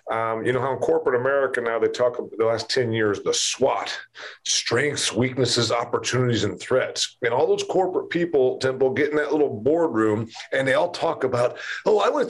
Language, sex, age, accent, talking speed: English, male, 40-59, American, 205 wpm